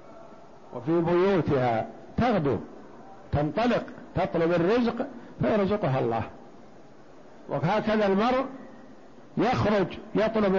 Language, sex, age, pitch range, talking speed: Arabic, male, 50-69, 155-195 Hz, 70 wpm